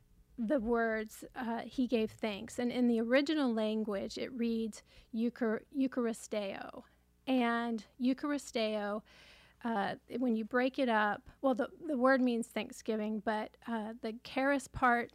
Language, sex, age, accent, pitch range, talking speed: English, female, 30-49, American, 225-255 Hz, 130 wpm